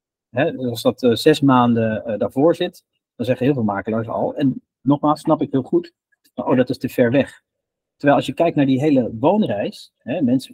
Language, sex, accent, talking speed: Dutch, male, Dutch, 210 wpm